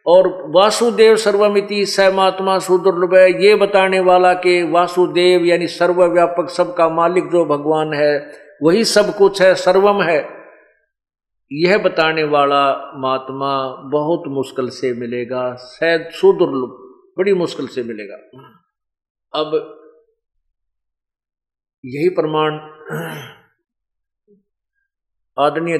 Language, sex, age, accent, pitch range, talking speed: Hindi, male, 50-69, native, 145-190 Hz, 100 wpm